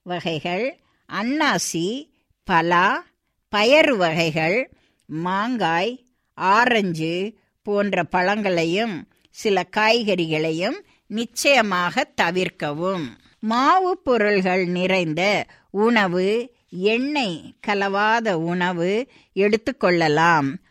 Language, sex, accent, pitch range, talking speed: Tamil, female, native, 175-230 Hz, 60 wpm